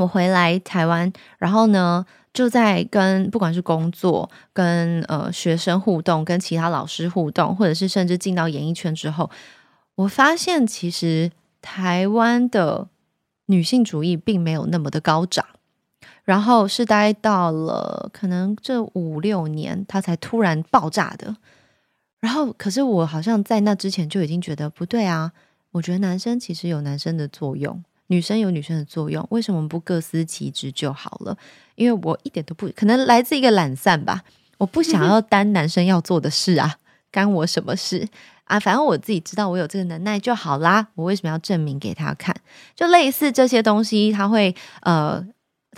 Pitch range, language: 165-210 Hz, Chinese